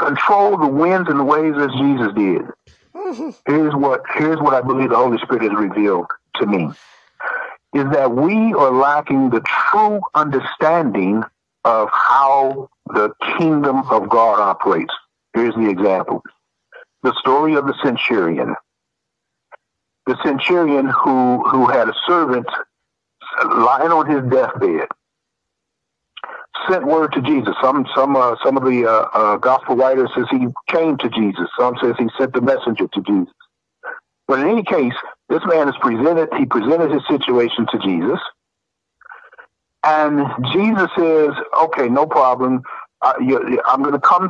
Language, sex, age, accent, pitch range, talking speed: English, male, 60-79, American, 125-170 Hz, 145 wpm